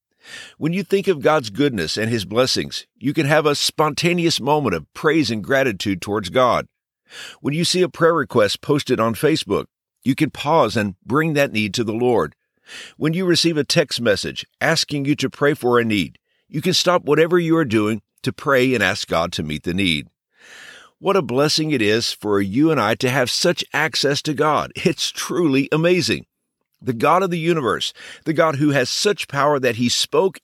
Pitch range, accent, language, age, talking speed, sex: 115-155 Hz, American, English, 50-69, 200 wpm, male